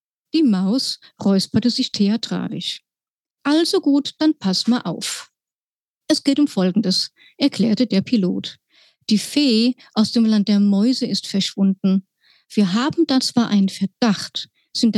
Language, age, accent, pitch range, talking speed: German, 50-69, German, 200-275 Hz, 135 wpm